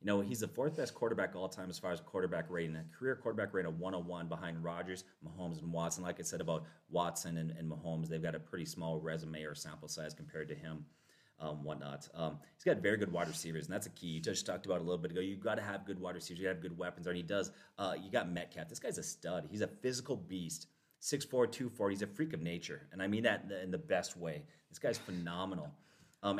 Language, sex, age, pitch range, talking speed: English, male, 30-49, 85-100 Hz, 275 wpm